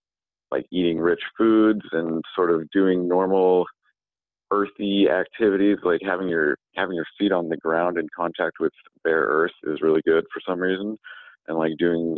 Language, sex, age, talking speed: English, male, 40-59, 170 wpm